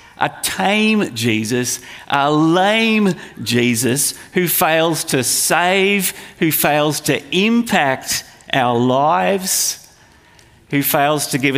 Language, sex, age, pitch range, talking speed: English, male, 50-69, 125-185 Hz, 105 wpm